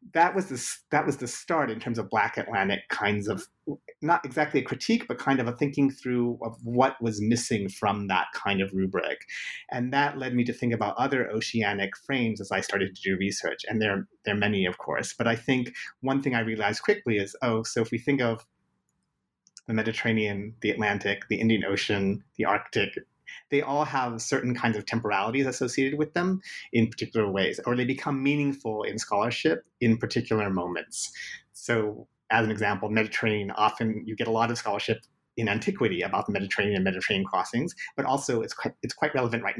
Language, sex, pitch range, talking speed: English, male, 105-130 Hz, 195 wpm